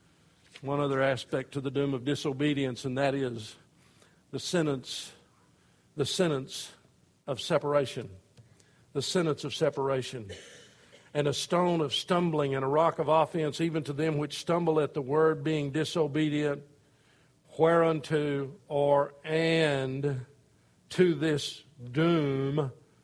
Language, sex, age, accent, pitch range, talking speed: English, male, 50-69, American, 140-165 Hz, 120 wpm